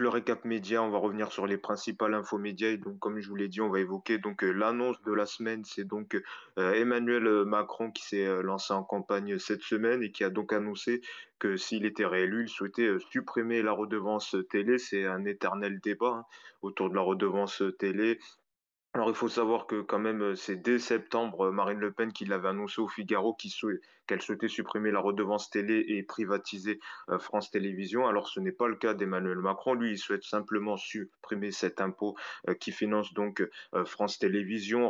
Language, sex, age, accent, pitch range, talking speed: French, male, 20-39, French, 100-115 Hz, 195 wpm